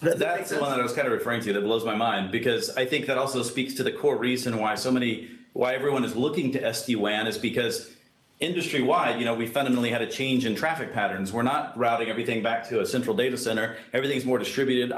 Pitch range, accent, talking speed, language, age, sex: 115-140 Hz, American, 235 wpm, English, 40-59, male